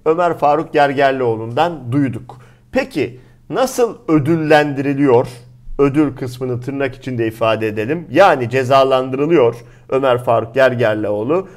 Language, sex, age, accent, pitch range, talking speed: Turkish, male, 50-69, native, 125-175 Hz, 95 wpm